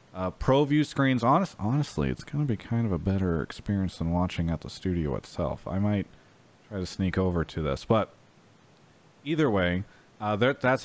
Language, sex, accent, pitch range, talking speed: English, male, American, 95-120 Hz, 190 wpm